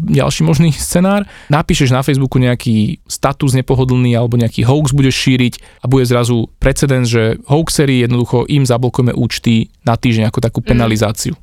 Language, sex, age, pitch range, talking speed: Slovak, male, 20-39, 120-145 Hz, 150 wpm